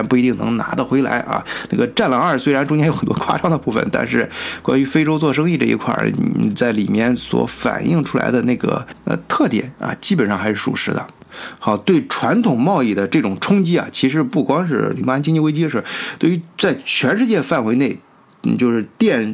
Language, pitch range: Chinese, 115-155 Hz